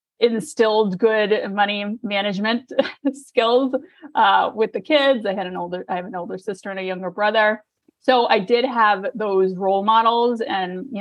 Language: English